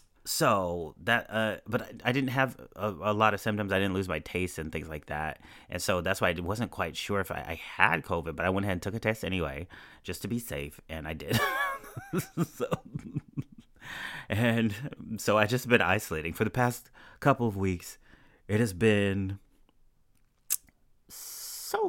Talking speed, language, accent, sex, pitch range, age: 185 wpm, English, American, male, 85-115 Hz, 30-49